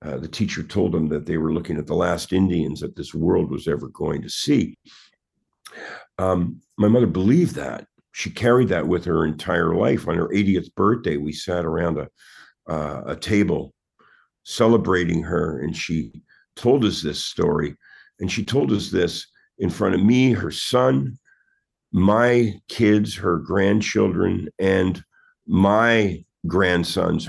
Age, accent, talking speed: 50-69, American, 155 wpm